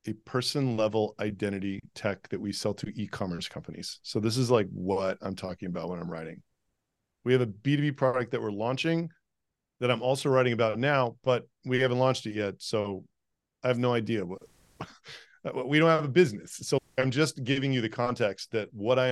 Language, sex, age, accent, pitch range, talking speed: English, male, 40-59, American, 105-135 Hz, 200 wpm